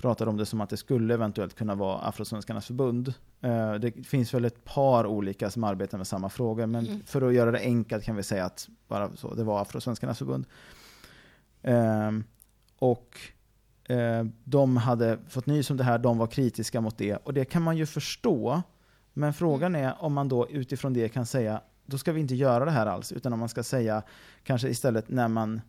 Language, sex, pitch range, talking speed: Swedish, male, 110-140 Hz, 200 wpm